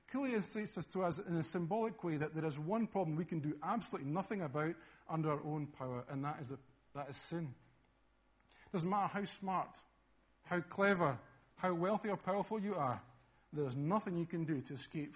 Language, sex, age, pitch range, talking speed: English, male, 50-69, 140-205 Hz, 190 wpm